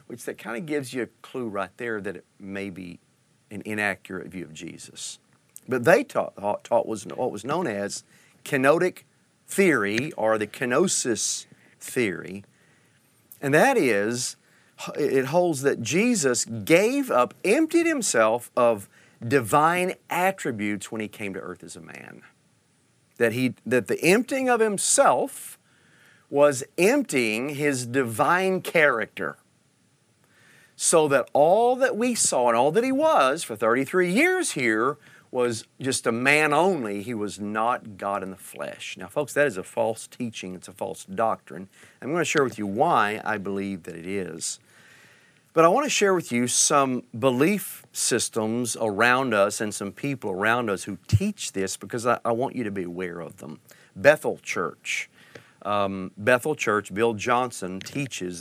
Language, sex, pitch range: English, male, 100-150 Hz